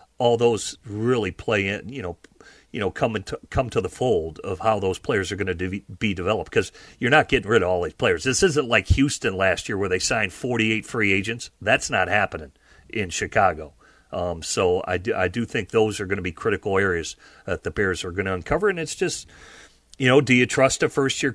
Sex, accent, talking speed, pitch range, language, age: male, American, 230 wpm, 100-125 Hz, English, 40-59